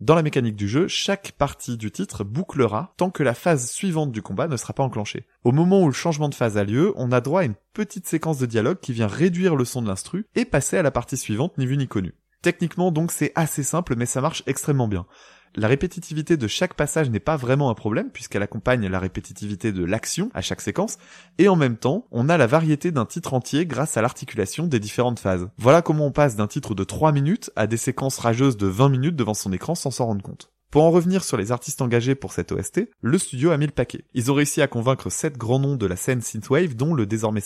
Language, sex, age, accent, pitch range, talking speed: French, male, 20-39, French, 115-160 Hz, 250 wpm